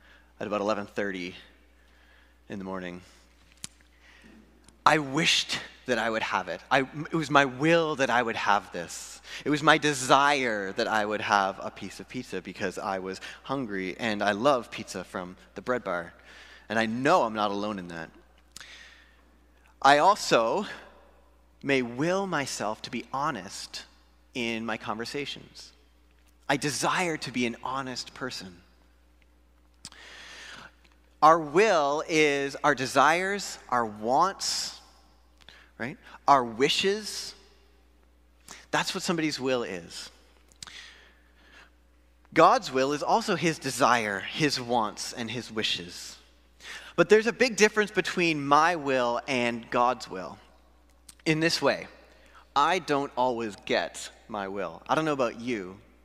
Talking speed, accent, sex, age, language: 130 wpm, American, male, 30-49, English